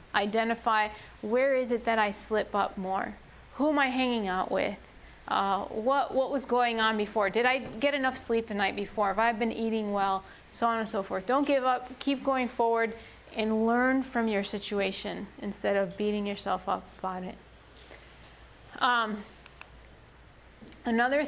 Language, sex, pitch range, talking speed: English, female, 210-250 Hz, 170 wpm